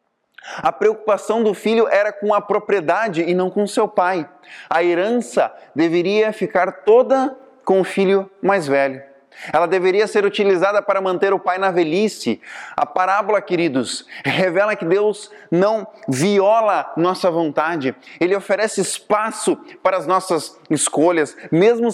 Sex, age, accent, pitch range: male, 20-39, Brazilian, 180-210 Hz